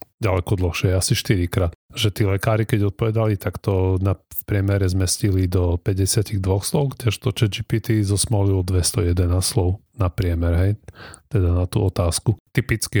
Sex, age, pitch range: male, 30-49, 90-105 Hz